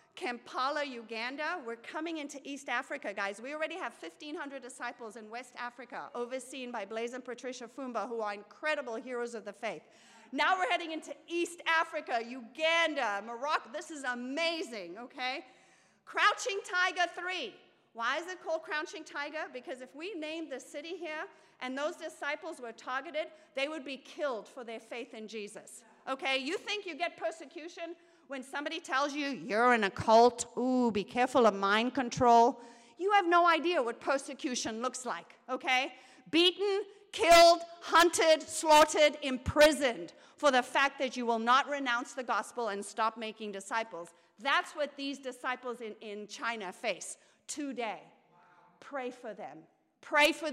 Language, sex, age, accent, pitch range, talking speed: English, female, 40-59, American, 240-320 Hz, 160 wpm